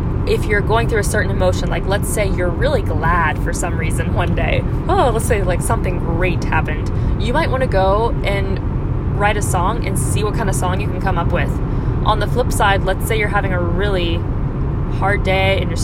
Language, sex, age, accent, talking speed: English, female, 20-39, American, 225 wpm